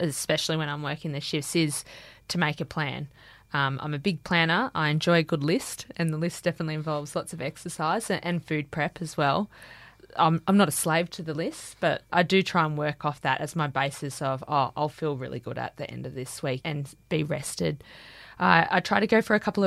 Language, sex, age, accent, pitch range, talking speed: English, female, 20-39, Australian, 150-185 Hz, 230 wpm